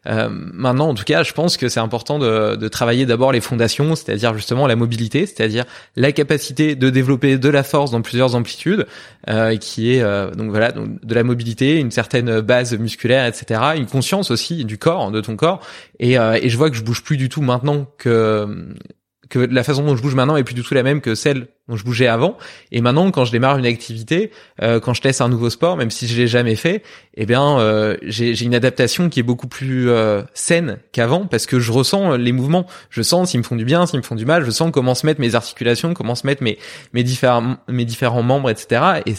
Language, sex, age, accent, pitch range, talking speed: French, male, 20-39, French, 115-145 Hz, 245 wpm